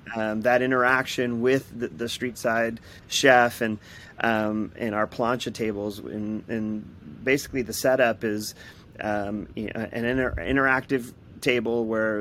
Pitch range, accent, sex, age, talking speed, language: 110-125 Hz, American, male, 30-49, 135 wpm, English